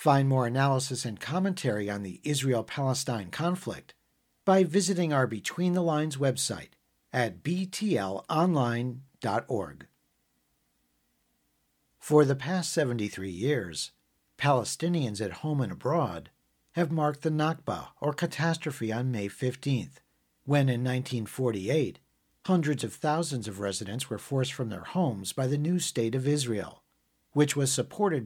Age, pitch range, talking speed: 50-69, 115-160 Hz, 125 wpm